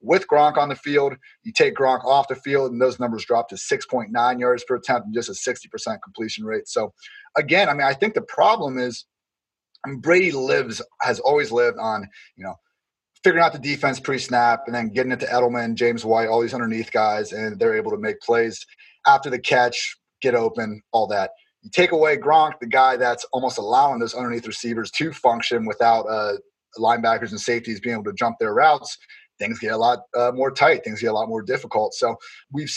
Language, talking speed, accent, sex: English, 210 wpm, American, male